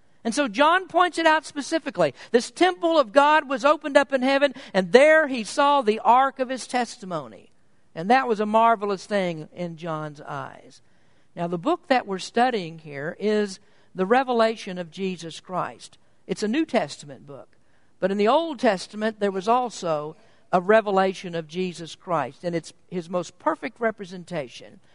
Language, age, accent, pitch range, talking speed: English, 50-69, American, 175-245 Hz, 170 wpm